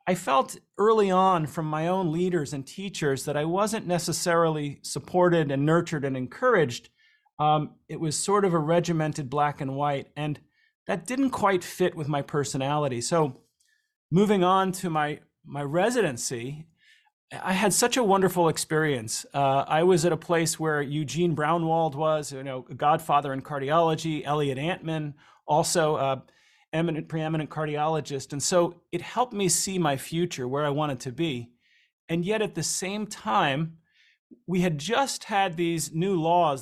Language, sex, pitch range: English, male, 145-185 Hz